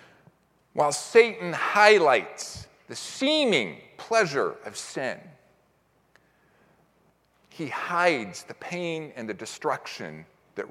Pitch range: 150-205 Hz